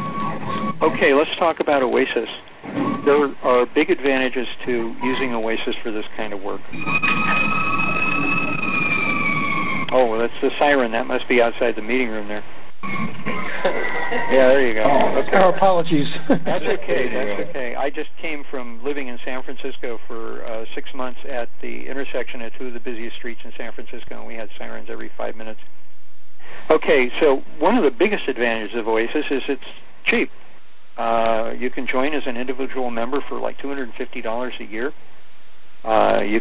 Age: 60-79